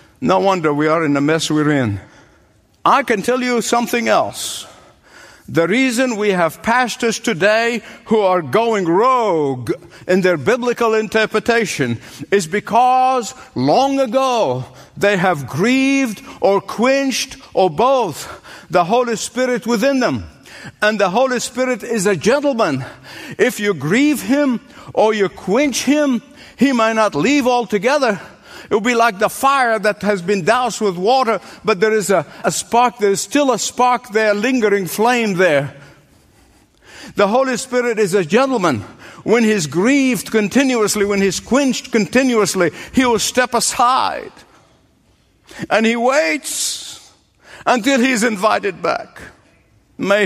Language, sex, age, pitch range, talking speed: English, male, 60-79, 195-255 Hz, 140 wpm